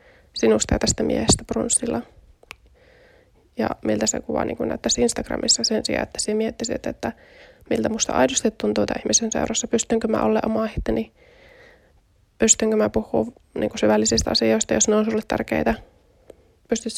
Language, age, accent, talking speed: Finnish, 20-39, native, 155 wpm